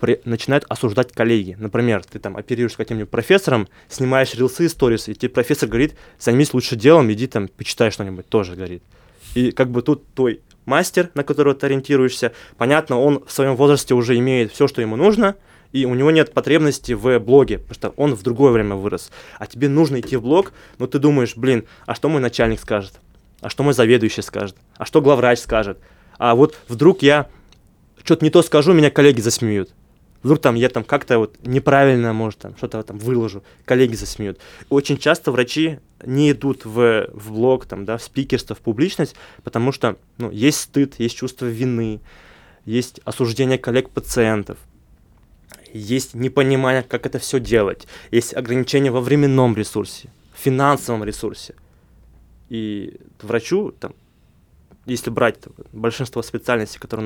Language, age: Russian, 20-39